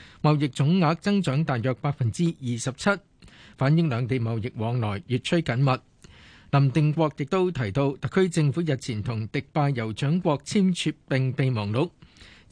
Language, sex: Chinese, male